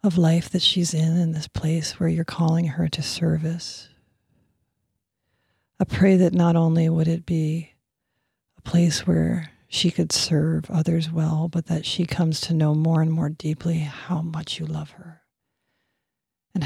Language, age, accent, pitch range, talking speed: English, 40-59, American, 155-175 Hz, 165 wpm